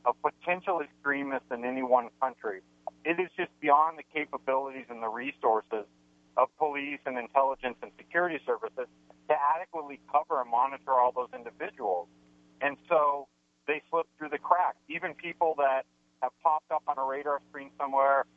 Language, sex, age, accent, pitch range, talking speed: English, male, 50-69, American, 125-160 Hz, 160 wpm